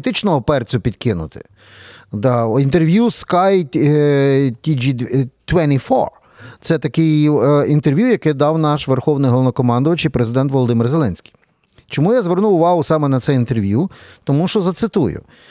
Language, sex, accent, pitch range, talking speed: Ukrainian, male, native, 125-180 Hz, 105 wpm